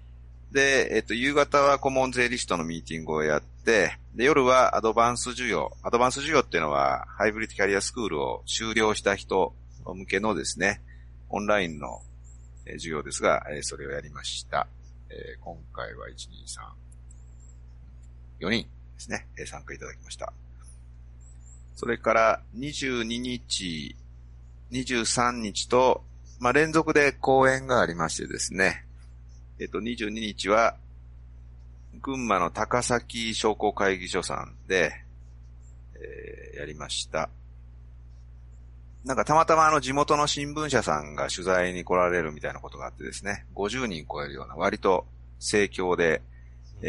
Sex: male